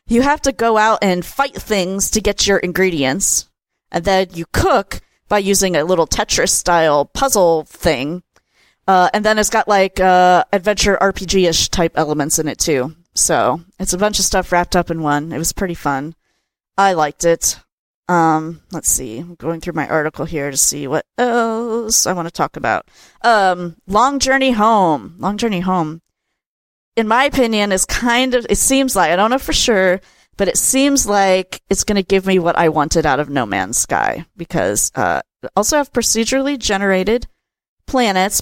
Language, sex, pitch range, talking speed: English, female, 160-205 Hz, 185 wpm